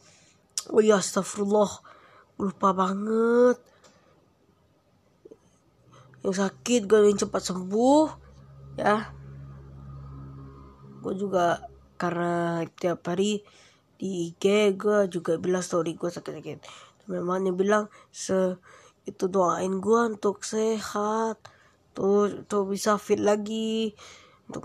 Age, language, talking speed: 20-39, Indonesian, 95 wpm